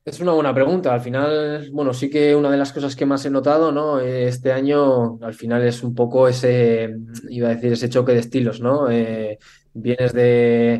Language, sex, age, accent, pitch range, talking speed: Spanish, male, 20-39, Spanish, 120-135 Hz, 205 wpm